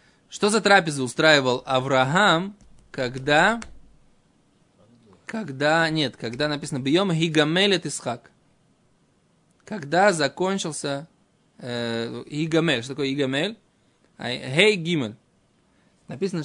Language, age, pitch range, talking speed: Russian, 20-39, 135-170 Hz, 85 wpm